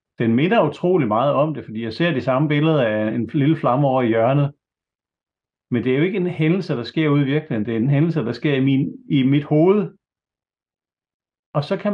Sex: male